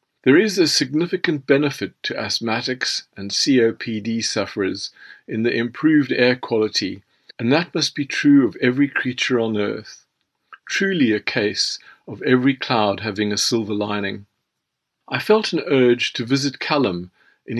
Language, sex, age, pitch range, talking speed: English, male, 50-69, 115-140 Hz, 145 wpm